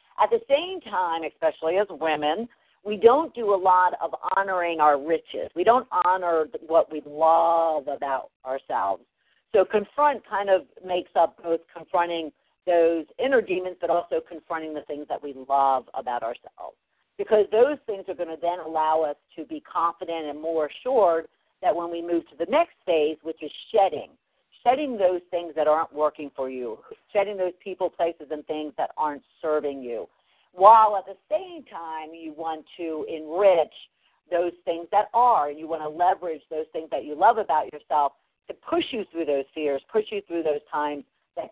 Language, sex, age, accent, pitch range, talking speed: English, female, 50-69, American, 155-205 Hz, 185 wpm